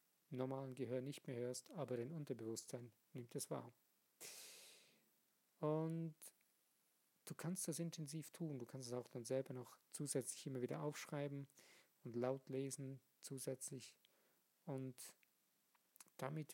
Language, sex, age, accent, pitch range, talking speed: German, male, 50-69, German, 125-150 Hz, 125 wpm